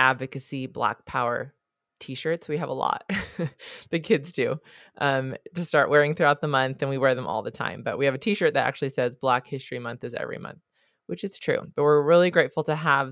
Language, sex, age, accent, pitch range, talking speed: English, female, 20-39, American, 140-175 Hz, 220 wpm